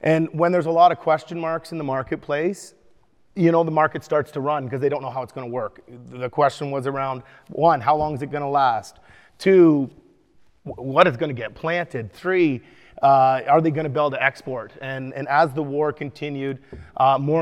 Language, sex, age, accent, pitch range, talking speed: English, male, 30-49, American, 135-160 Hz, 220 wpm